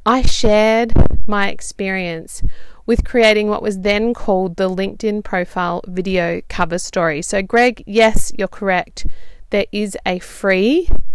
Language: English